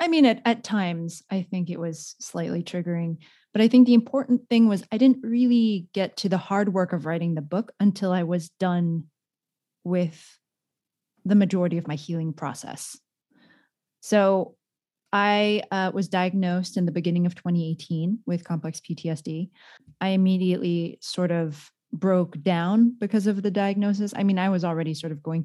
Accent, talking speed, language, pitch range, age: American, 170 wpm, English, 170-225 Hz, 20-39